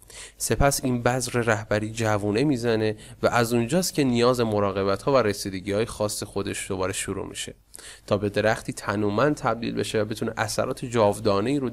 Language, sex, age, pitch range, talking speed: Persian, male, 30-49, 105-135 Hz, 165 wpm